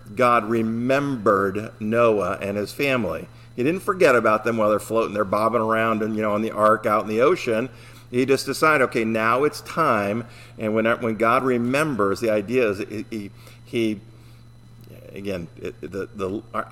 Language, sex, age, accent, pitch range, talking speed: English, male, 50-69, American, 110-125 Hz, 180 wpm